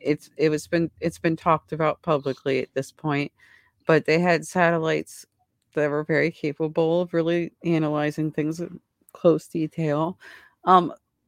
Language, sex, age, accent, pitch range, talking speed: English, female, 40-59, American, 150-180 Hz, 150 wpm